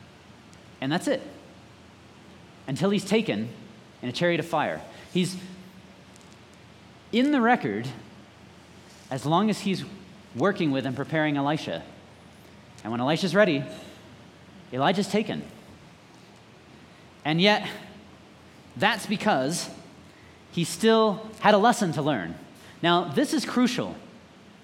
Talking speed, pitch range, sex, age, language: 110 wpm, 175-230 Hz, male, 30-49, English